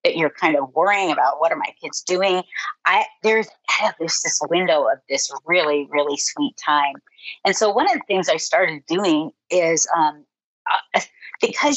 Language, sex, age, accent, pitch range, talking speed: English, female, 30-49, American, 150-215 Hz, 175 wpm